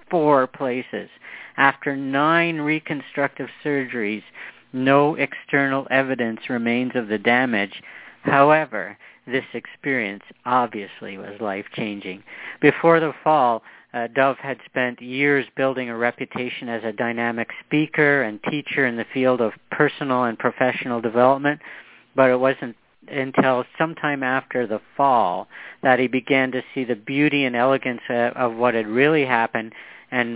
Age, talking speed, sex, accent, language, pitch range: 50-69, 135 wpm, male, American, English, 115-135 Hz